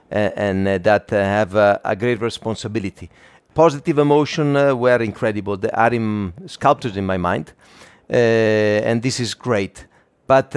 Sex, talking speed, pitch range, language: male, 155 wpm, 105-135 Hz, English